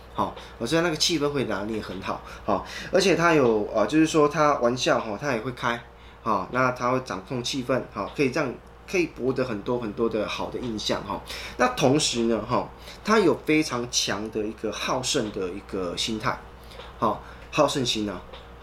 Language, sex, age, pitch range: Chinese, male, 20-39, 105-135 Hz